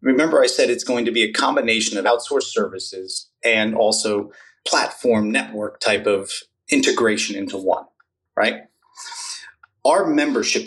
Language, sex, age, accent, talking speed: English, male, 30-49, American, 135 wpm